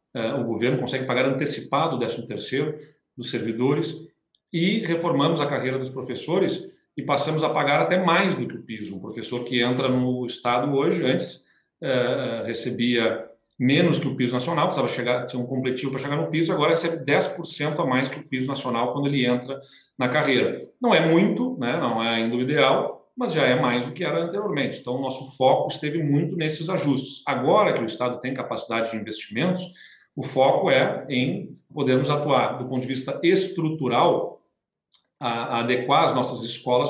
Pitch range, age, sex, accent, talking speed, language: 125-150 Hz, 40-59, male, Brazilian, 185 wpm, Portuguese